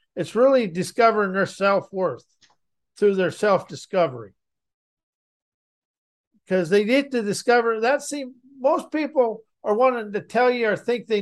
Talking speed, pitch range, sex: 130 wpm, 185-230 Hz, male